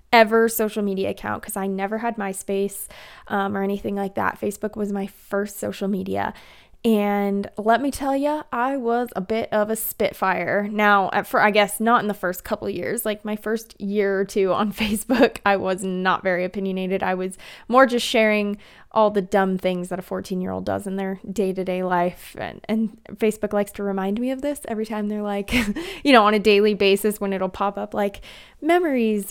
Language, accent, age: English, American, 20-39